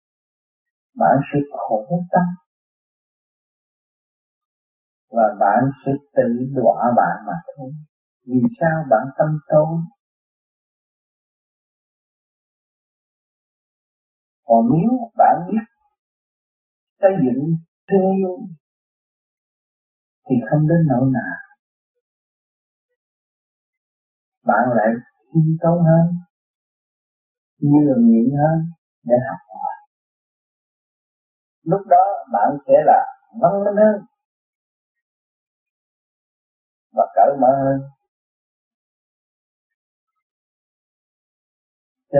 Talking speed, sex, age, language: 75 wpm, male, 50-69, Vietnamese